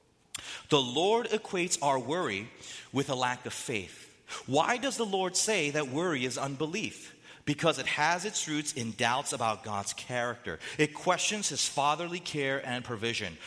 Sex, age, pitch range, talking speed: male, 30-49, 130-190 Hz, 160 wpm